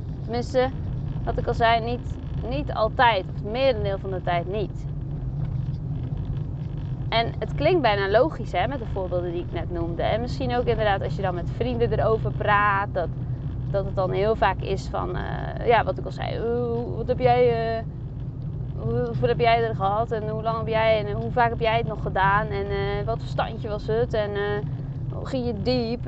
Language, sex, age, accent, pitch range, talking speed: Dutch, female, 20-39, Dutch, 125-190 Hz, 200 wpm